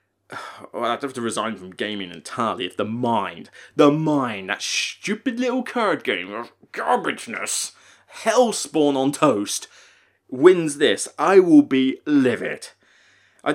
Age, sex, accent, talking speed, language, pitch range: 20-39, male, British, 125 wpm, English, 130-215 Hz